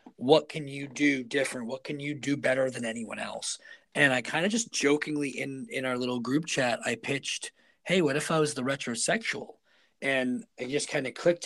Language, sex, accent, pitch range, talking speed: English, male, American, 125-150 Hz, 210 wpm